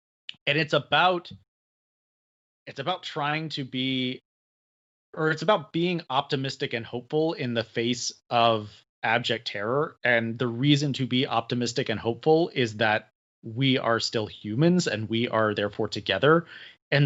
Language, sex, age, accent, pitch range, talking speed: English, male, 30-49, American, 110-140 Hz, 145 wpm